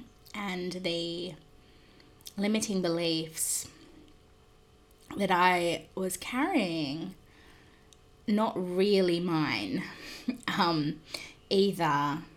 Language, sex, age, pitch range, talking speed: English, female, 20-39, 165-195 Hz, 65 wpm